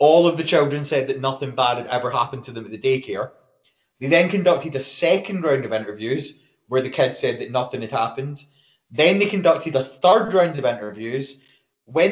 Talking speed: 205 wpm